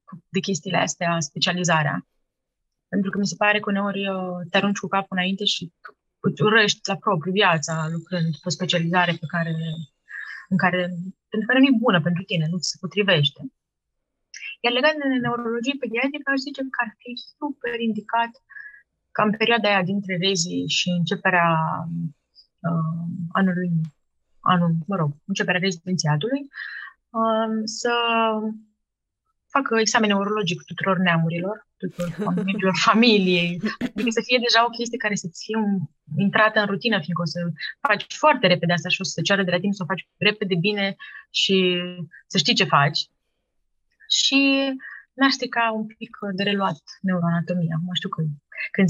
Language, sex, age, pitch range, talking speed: Romanian, female, 20-39, 170-220 Hz, 150 wpm